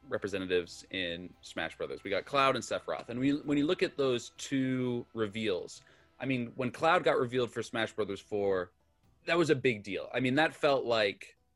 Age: 30-49